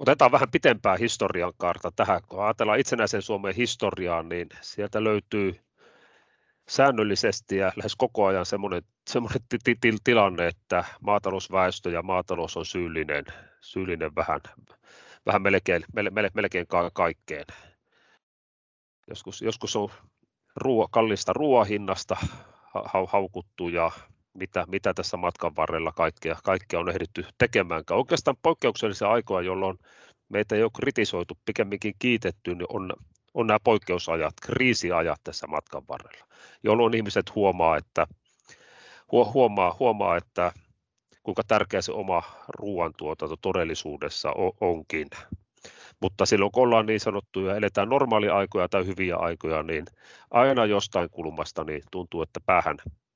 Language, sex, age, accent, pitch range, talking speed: Finnish, male, 30-49, native, 90-110 Hz, 125 wpm